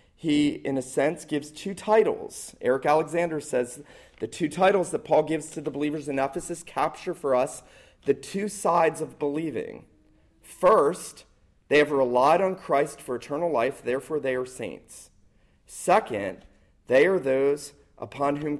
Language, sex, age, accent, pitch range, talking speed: English, male, 40-59, American, 115-145 Hz, 155 wpm